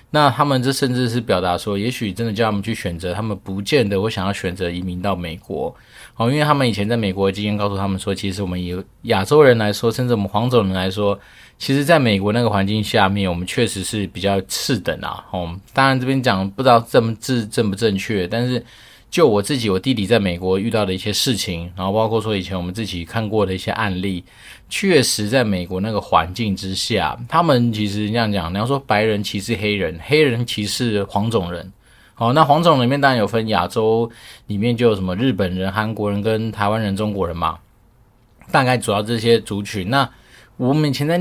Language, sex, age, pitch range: Chinese, male, 20-39, 100-120 Hz